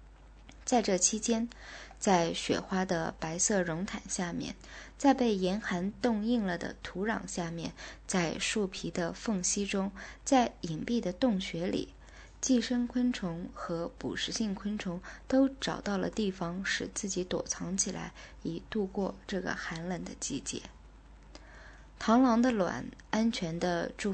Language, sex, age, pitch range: Chinese, female, 20-39, 175-225 Hz